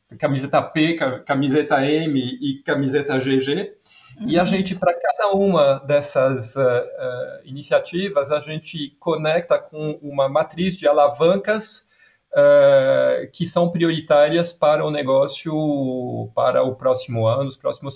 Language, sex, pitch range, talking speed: Portuguese, male, 130-165 Hz, 125 wpm